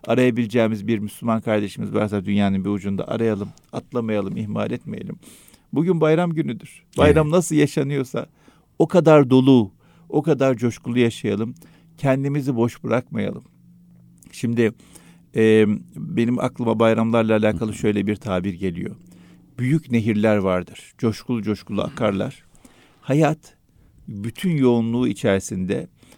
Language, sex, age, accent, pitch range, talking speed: Turkish, male, 50-69, native, 105-140 Hz, 110 wpm